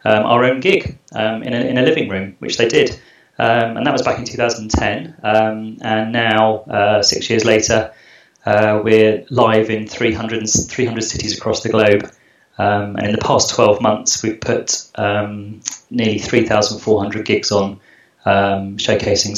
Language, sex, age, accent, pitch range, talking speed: English, male, 30-49, British, 100-115 Hz, 165 wpm